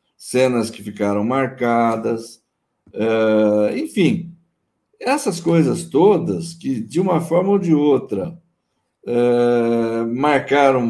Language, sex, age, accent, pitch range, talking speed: Portuguese, male, 60-79, Brazilian, 125-200 Hz, 90 wpm